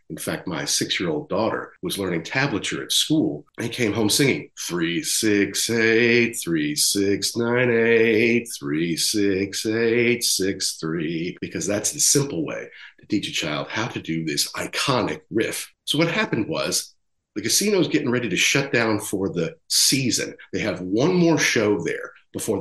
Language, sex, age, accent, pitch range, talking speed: English, male, 50-69, American, 105-150 Hz, 165 wpm